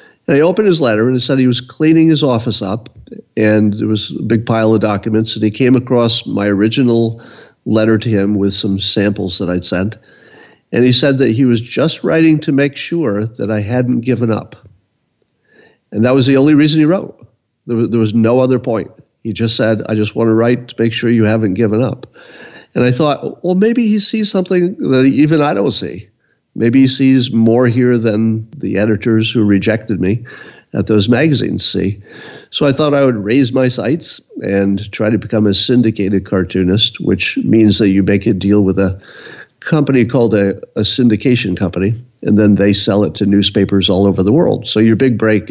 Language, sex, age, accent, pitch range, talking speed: English, male, 50-69, American, 100-125 Hz, 205 wpm